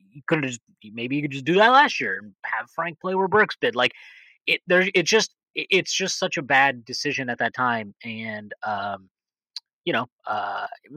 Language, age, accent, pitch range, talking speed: English, 30-49, American, 110-150 Hz, 210 wpm